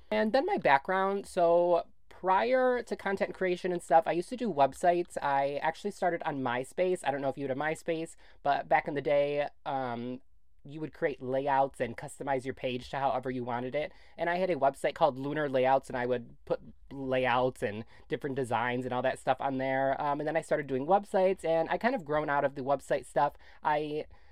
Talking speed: 215 wpm